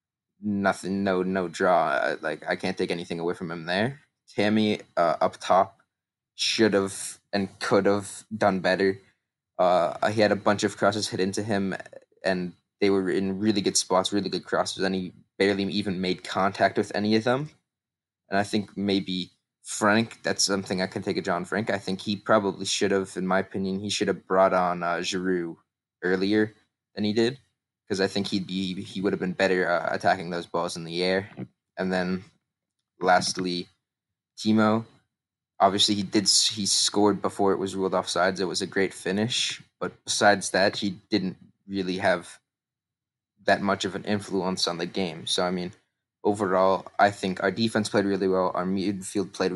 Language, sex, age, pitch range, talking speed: English, male, 20-39, 95-105 Hz, 185 wpm